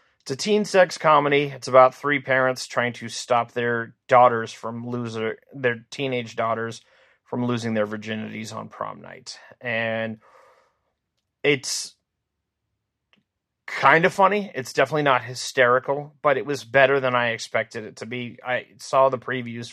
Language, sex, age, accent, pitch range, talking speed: English, male, 30-49, American, 110-130 Hz, 150 wpm